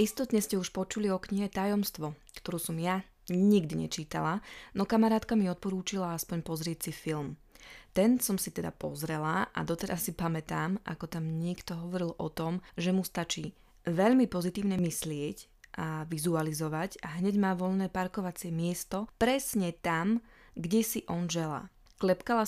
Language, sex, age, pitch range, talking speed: Slovak, female, 20-39, 165-195 Hz, 150 wpm